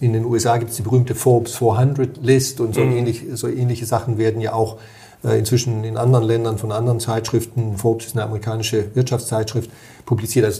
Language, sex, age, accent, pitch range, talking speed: German, male, 40-59, German, 110-125 Hz, 185 wpm